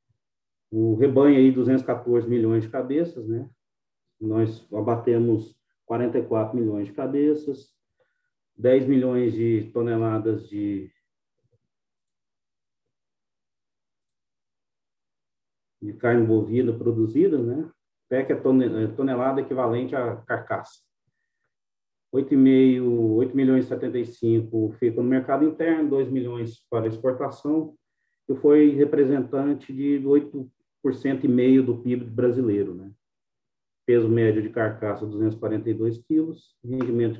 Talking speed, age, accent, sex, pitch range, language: 100 wpm, 40-59, Brazilian, male, 115-135 Hz, Portuguese